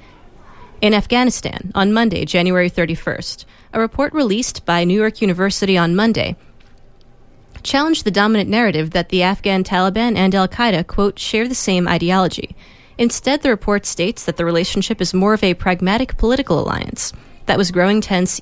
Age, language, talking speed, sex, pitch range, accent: 30-49, English, 155 wpm, female, 175-220 Hz, American